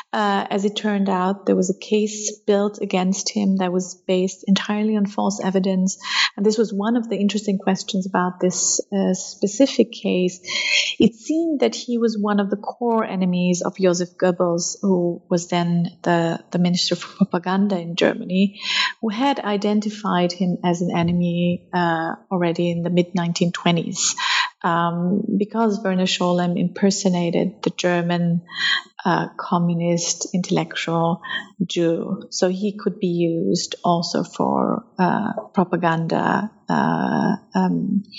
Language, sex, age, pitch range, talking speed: English, female, 30-49, 175-210 Hz, 140 wpm